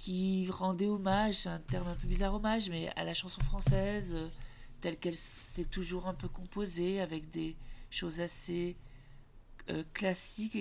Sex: male